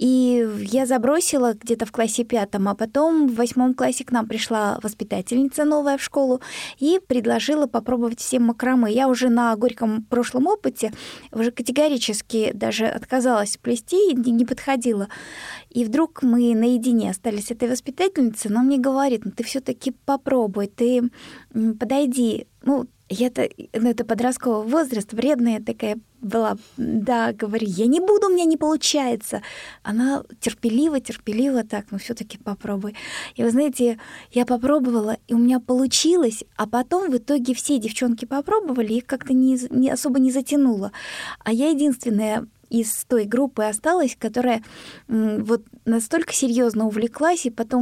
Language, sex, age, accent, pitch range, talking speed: Russian, female, 20-39, native, 230-265 Hz, 145 wpm